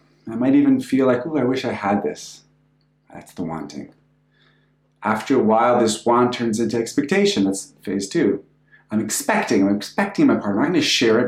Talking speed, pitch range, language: 195 wpm, 105-115 Hz, English